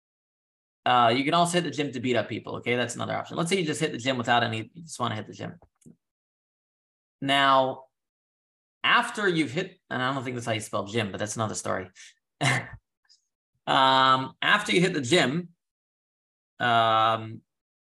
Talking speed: 185 wpm